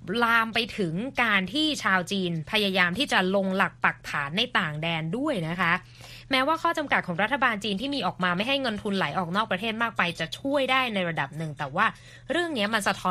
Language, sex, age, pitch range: Thai, female, 20-39, 175-240 Hz